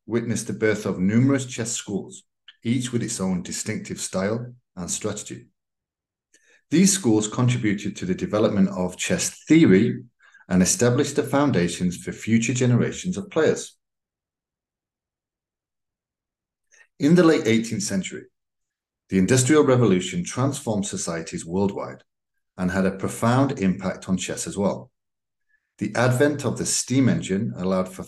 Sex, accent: male, British